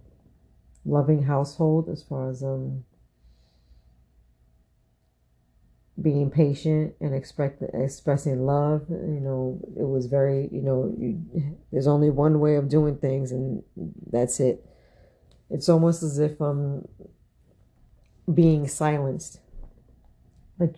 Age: 40-59